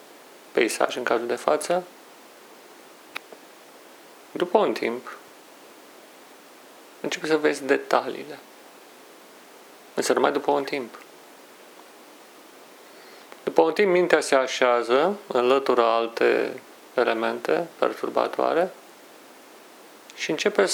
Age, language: 40-59, Romanian